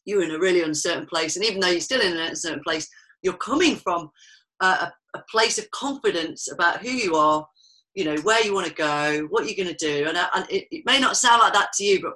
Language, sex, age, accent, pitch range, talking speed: English, female, 40-59, British, 165-235 Hz, 255 wpm